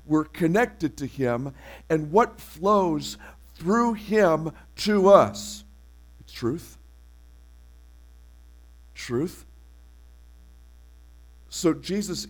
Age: 50-69